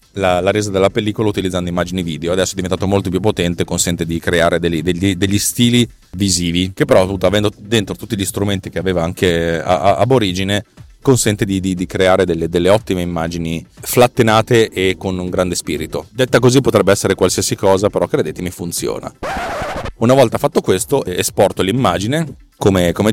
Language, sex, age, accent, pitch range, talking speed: Italian, male, 30-49, native, 90-110 Hz, 165 wpm